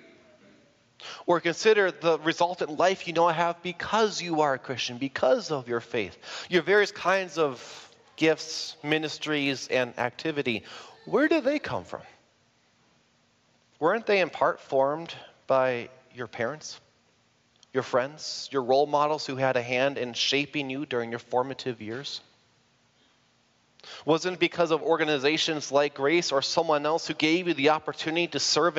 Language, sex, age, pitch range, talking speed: English, male, 30-49, 120-160 Hz, 150 wpm